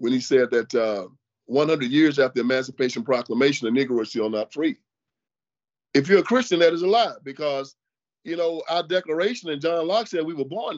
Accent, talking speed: American, 205 wpm